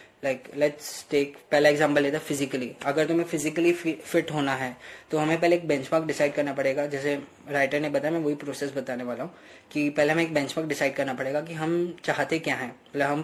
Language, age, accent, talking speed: Hindi, 20-39, native, 220 wpm